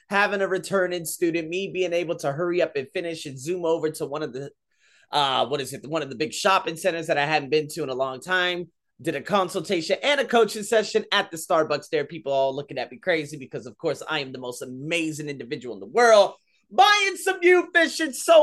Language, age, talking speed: English, 30-49, 240 wpm